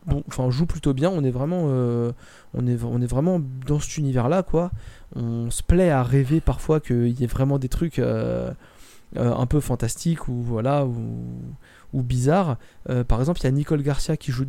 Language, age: French, 20-39